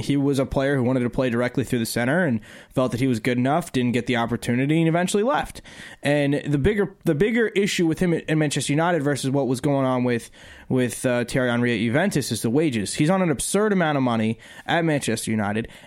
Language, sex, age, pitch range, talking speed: English, male, 20-39, 130-170 Hz, 235 wpm